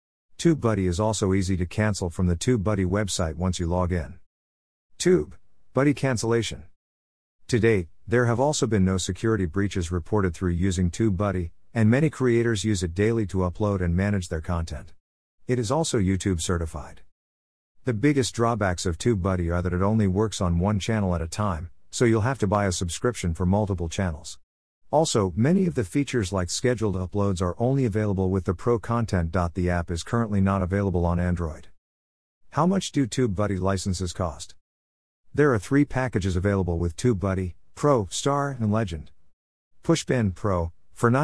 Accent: American